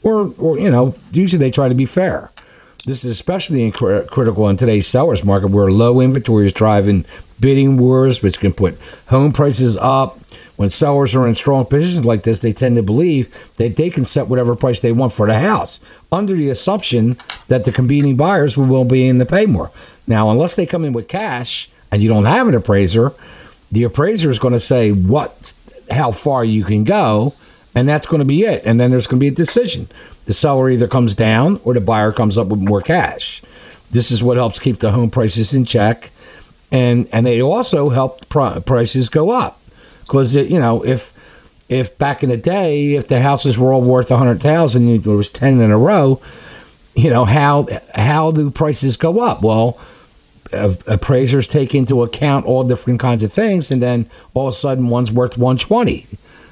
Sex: male